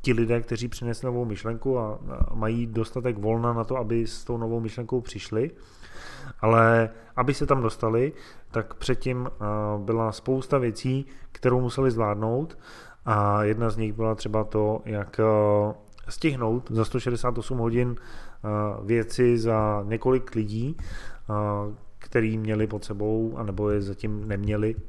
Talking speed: 135 wpm